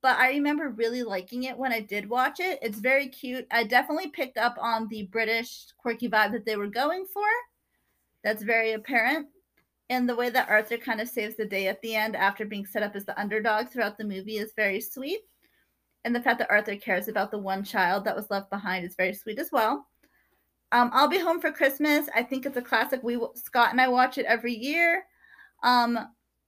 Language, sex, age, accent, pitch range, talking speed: English, female, 30-49, American, 210-265 Hz, 220 wpm